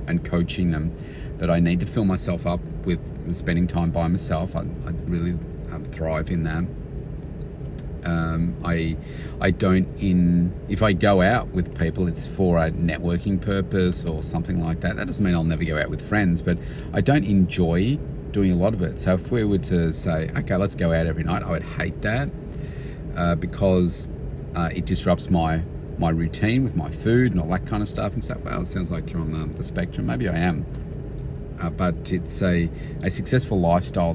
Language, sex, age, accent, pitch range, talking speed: English, male, 40-59, Australian, 85-95 Hz, 200 wpm